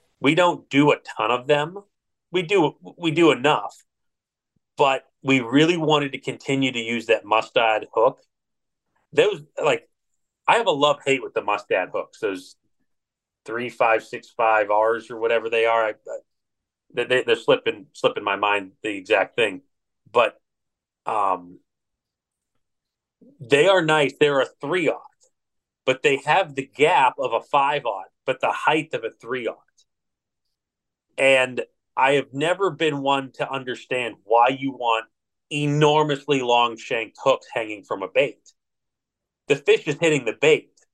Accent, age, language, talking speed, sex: American, 30-49, English, 155 wpm, male